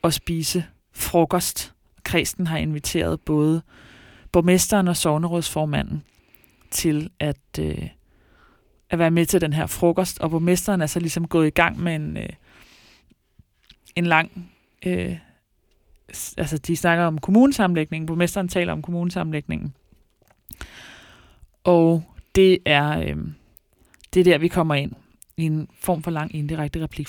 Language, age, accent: Danish, 20-39, native